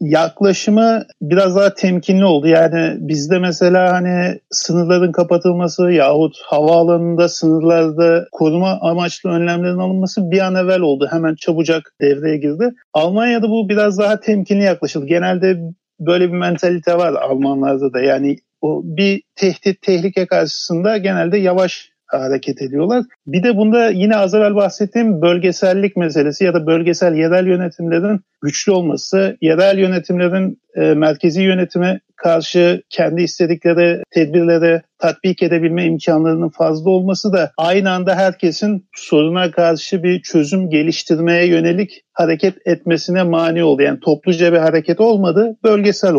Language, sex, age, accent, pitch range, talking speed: Turkish, male, 50-69, native, 165-190 Hz, 125 wpm